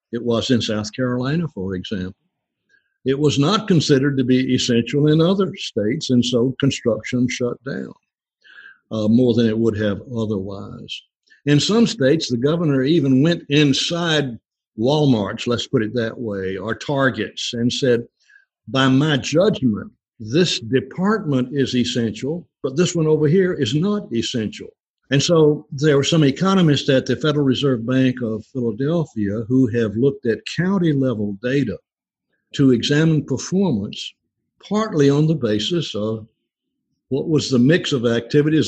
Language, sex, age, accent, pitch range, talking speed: English, male, 60-79, American, 115-150 Hz, 145 wpm